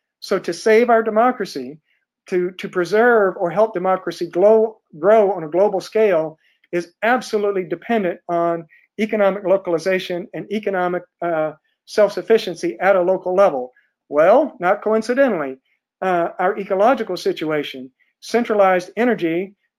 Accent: American